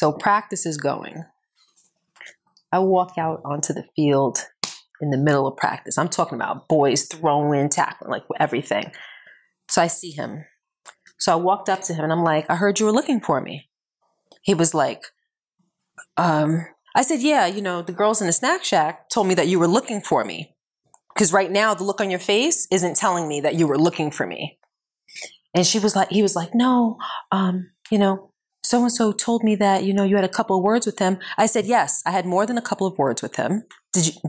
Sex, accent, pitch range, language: female, American, 165-220 Hz, English